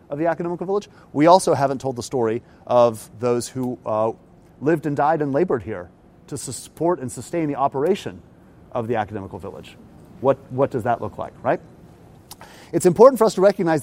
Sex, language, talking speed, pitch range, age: male, English, 185 wpm, 140-185 Hz, 30-49